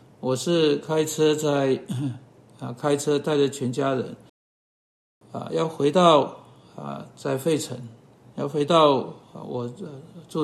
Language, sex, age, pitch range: Chinese, male, 60-79, 125-150 Hz